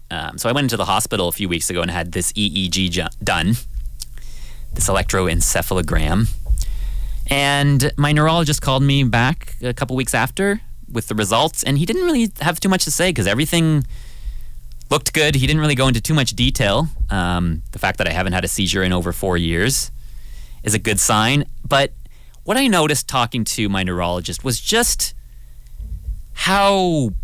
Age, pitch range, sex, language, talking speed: 30-49, 90-140 Hz, male, English, 175 wpm